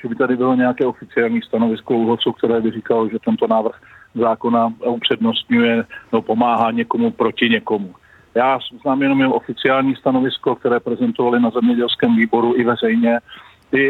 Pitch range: 115-135 Hz